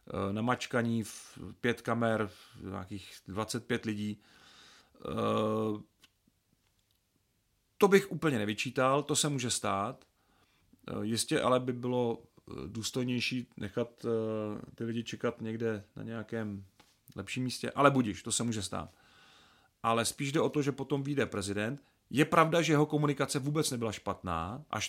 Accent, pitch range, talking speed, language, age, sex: native, 105-130 Hz, 130 wpm, Czech, 40-59, male